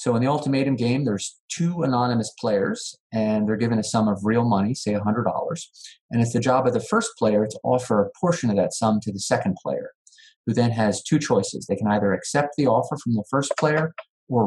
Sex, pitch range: male, 105-130 Hz